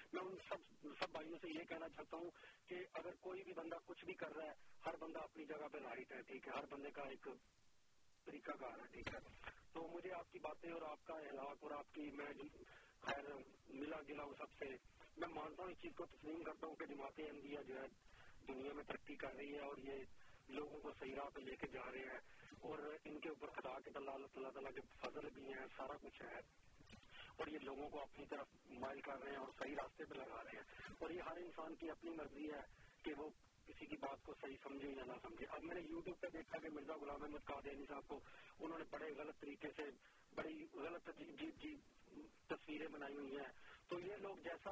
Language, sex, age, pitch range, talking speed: Urdu, male, 40-59, 140-165 Hz, 180 wpm